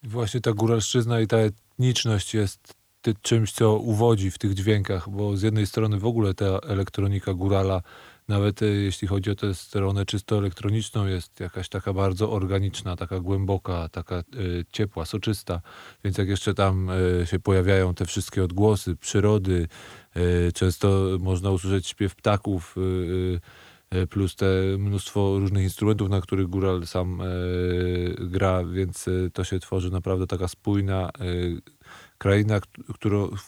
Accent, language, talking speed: native, Polish, 135 wpm